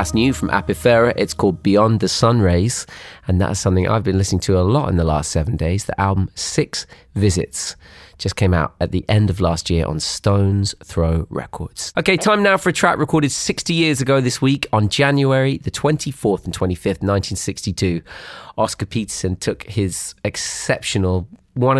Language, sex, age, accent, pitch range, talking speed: French, male, 30-49, British, 90-115 Hz, 175 wpm